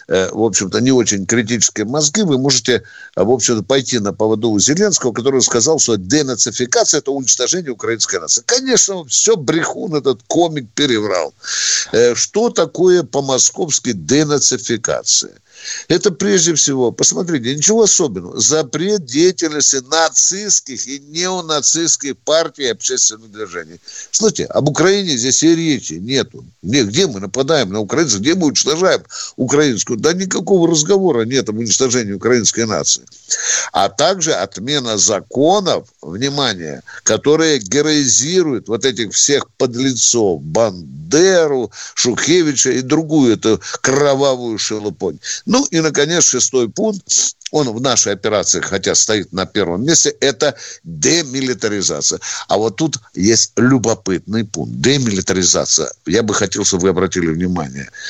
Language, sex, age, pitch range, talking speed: Russian, male, 60-79, 115-165 Hz, 125 wpm